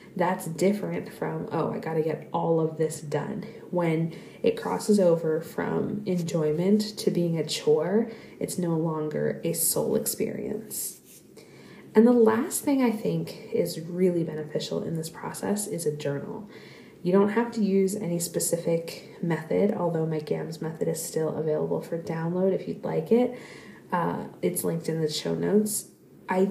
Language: English